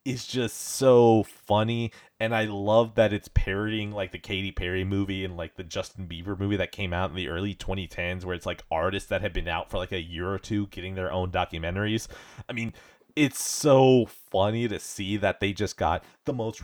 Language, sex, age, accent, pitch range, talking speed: English, male, 30-49, American, 95-120 Hz, 215 wpm